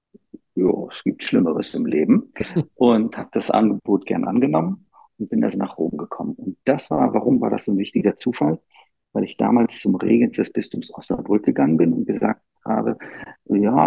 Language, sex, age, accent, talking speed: German, male, 50-69, German, 180 wpm